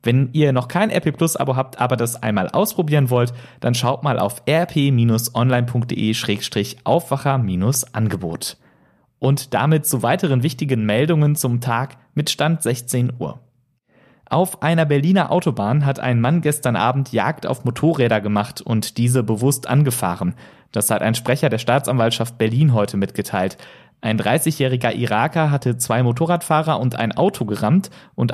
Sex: male